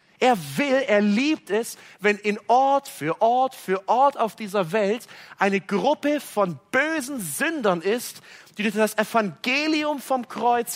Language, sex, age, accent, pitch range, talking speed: German, male, 40-59, German, 185-250 Hz, 150 wpm